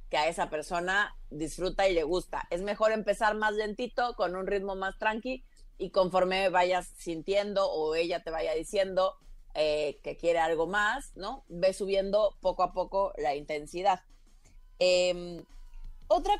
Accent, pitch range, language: Mexican, 165-220 Hz, Spanish